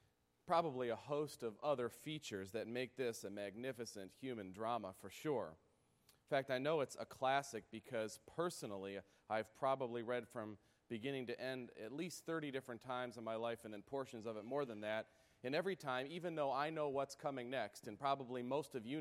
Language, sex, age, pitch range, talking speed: English, male, 30-49, 105-140 Hz, 195 wpm